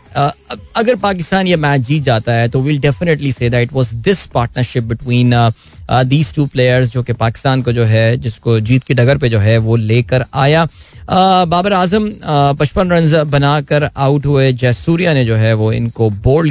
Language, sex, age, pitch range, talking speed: Hindi, male, 20-39, 120-150 Hz, 185 wpm